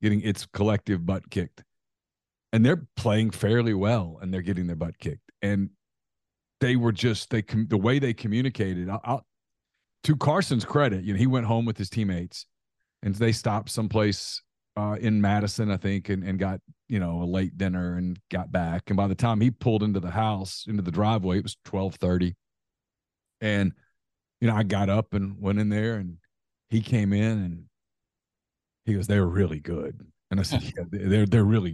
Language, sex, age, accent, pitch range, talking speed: English, male, 40-59, American, 95-120 Hz, 185 wpm